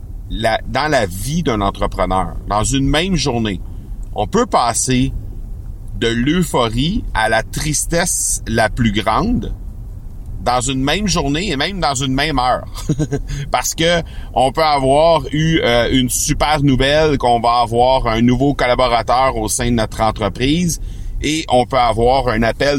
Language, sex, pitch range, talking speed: French, male, 100-130 Hz, 155 wpm